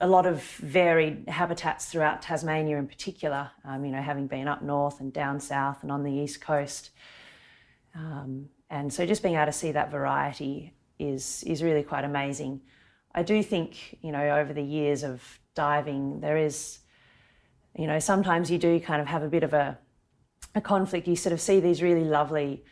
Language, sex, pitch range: English, female, 140-165 Hz